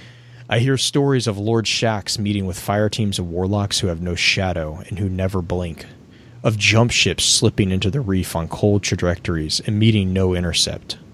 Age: 30-49